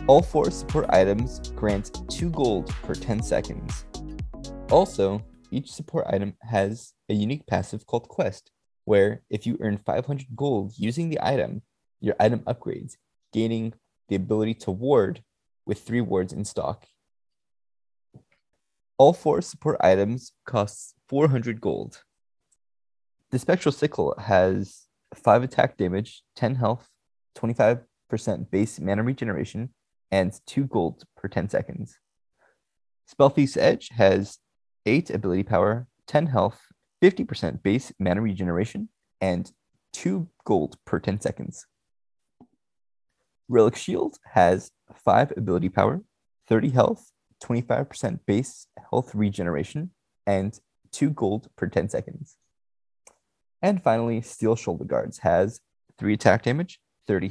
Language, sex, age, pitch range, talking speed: English, male, 20-39, 100-130 Hz, 120 wpm